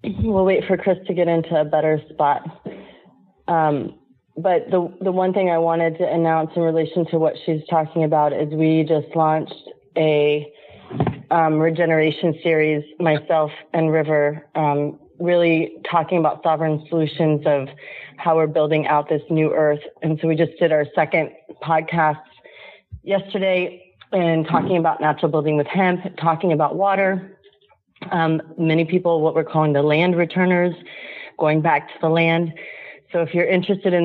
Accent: American